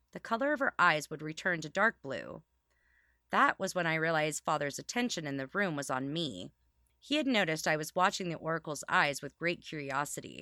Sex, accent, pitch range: female, American, 145-215 Hz